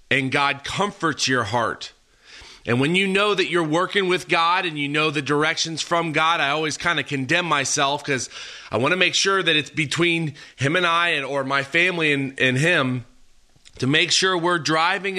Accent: American